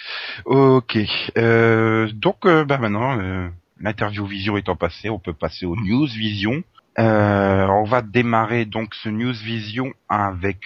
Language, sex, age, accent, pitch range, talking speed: French, male, 40-59, French, 90-120 Hz, 145 wpm